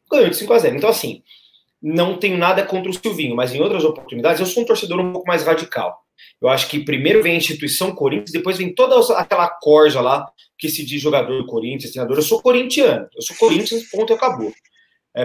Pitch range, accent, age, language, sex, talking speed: 150-220 Hz, Brazilian, 30-49, Portuguese, male, 210 wpm